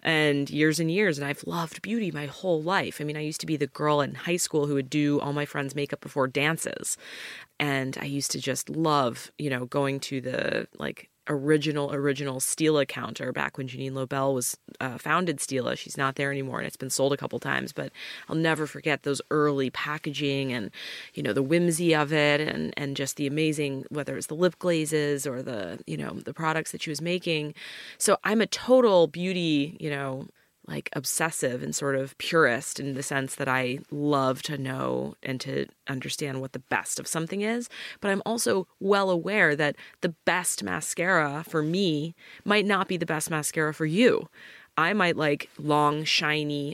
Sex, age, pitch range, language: female, 20-39, 140-165 Hz, English